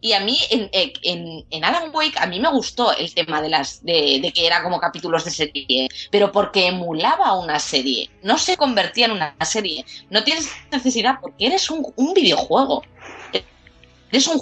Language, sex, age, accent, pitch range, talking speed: Spanish, female, 20-39, Spanish, 170-250 Hz, 185 wpm